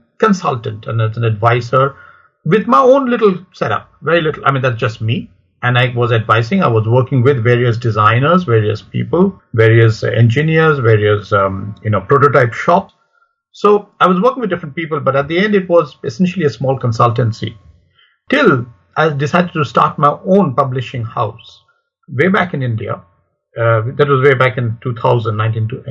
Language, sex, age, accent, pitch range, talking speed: English, male, 50-69, Indian, 115-145 Hz, 170 wpm